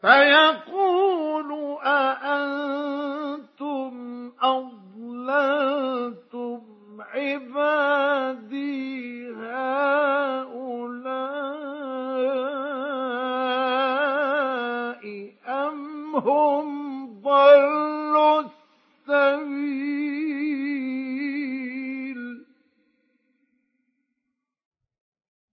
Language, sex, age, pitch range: Arabic, male, 50-69, 255-295 Hz